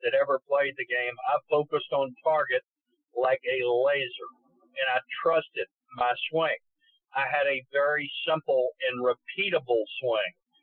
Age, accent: 50-69, American